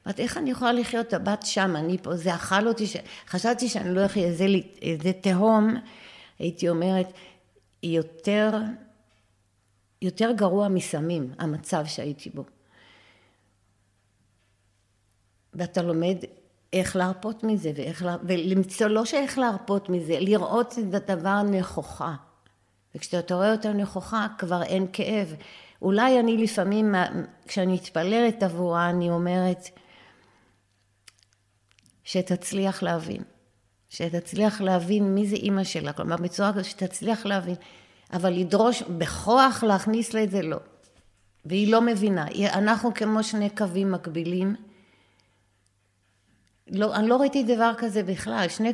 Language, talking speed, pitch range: Hebrew, 120 wpm, 165-210 Hz